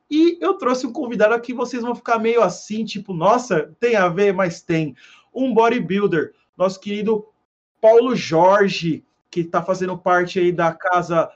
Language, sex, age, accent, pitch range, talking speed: Portuguese, male, 30-49, Brazilian, 175-225 Hz, 165 wpm